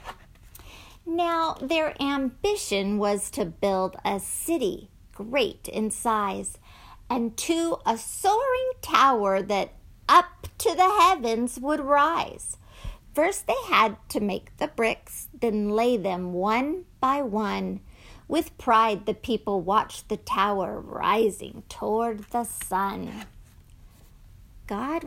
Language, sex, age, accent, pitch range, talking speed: English, female, 50-69, American, 200-290 Hz, 115 wpm